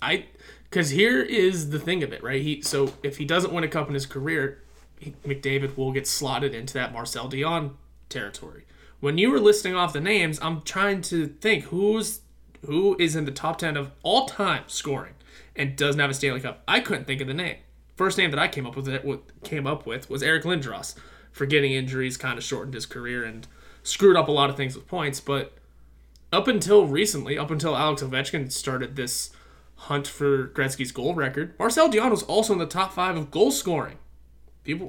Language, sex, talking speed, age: English, male, 205 wpm, 20-39